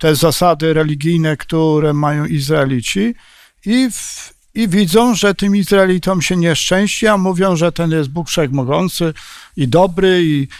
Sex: male